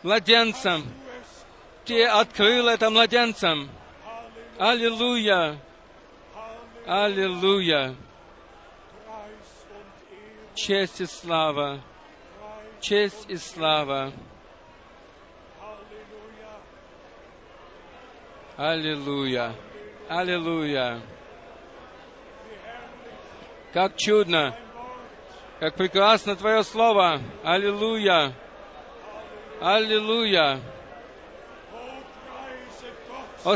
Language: Russian